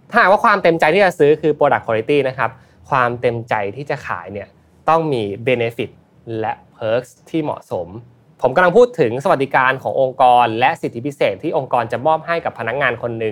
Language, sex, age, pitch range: Thai, male, 20-39, 120-155 Hz